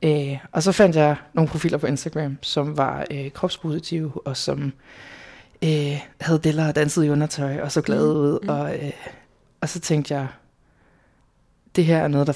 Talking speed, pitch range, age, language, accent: 180 wpm, 140-165 Hz, 20-39, Danish, native